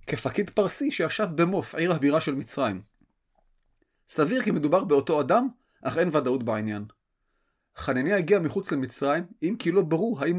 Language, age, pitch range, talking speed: Hebrew, 30-49, 140-205 Hz, 150 wpm